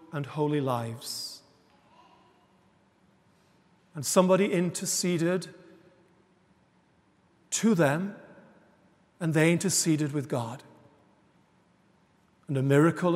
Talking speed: 75 wpm